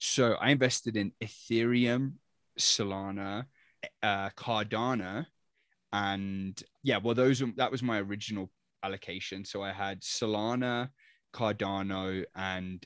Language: English